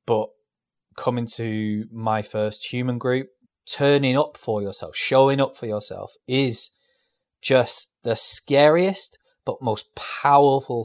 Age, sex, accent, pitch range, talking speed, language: 20-39, male, British, 110-140 Hz, 120 wpm, English